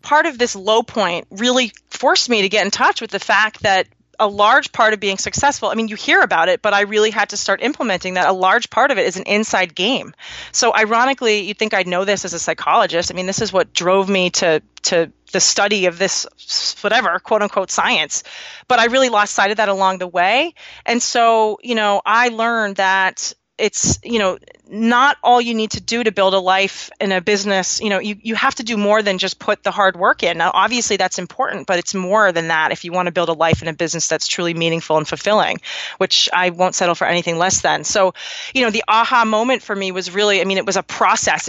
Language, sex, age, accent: English, female, 30-49, American